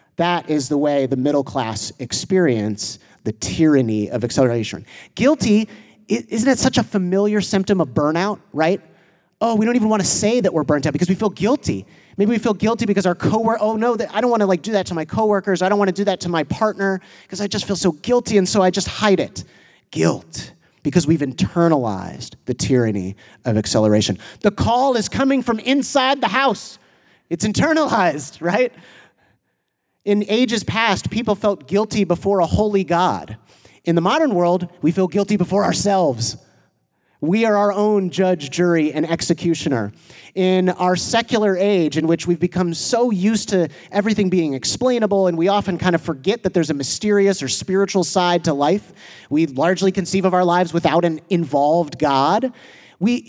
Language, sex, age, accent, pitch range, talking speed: English, male, 30-49, American, 160-210 Hz, 180 wpm